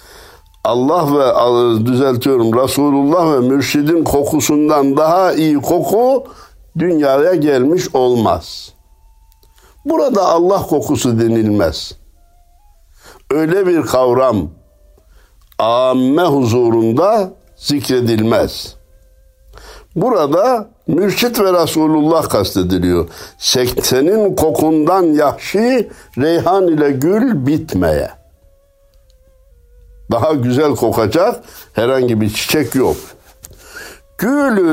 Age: 60-79